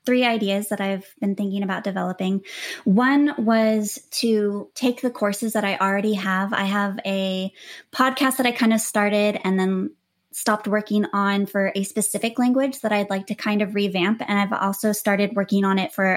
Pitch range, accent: 195-225 Hz, American